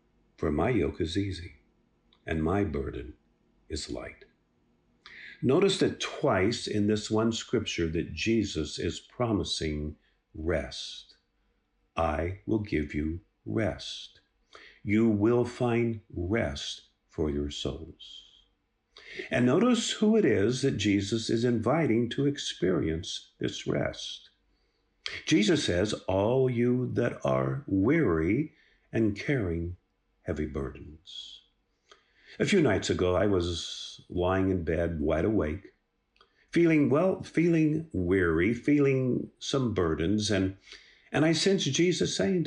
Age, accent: 50-69, American